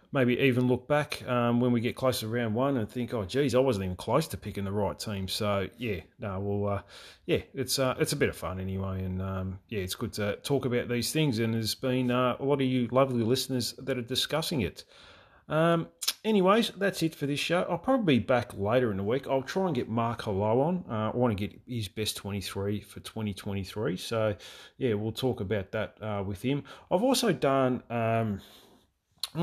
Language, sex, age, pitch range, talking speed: English, male, 30-49, 105-130 Hz, 220 wpm